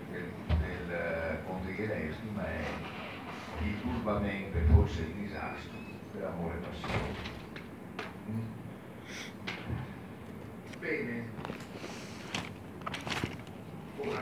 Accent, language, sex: native, Italian, male